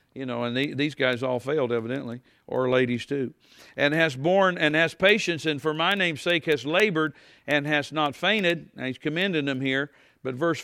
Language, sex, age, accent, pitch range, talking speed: English, male, 50-69, American, 130-160 Hz, 195 wpm